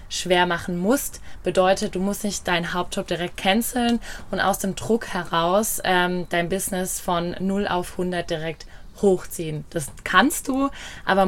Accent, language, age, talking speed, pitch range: German, German, 20-39, 155 wpm, 175-200 Hz